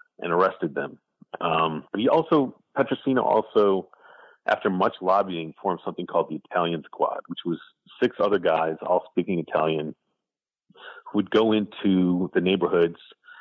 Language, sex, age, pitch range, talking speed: English, male, 40-59, 85-135 Hz, 145 wpm